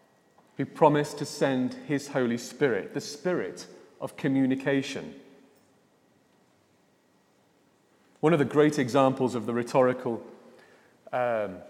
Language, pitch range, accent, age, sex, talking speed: English, 125-155 Hz, British, 40-59, male, 105 wpm